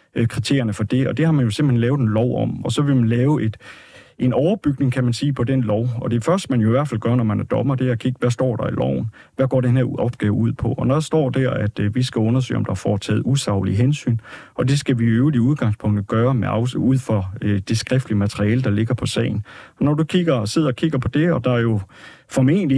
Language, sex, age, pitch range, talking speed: Danish, male, 30-49, 115-140 Hz, 270 wpm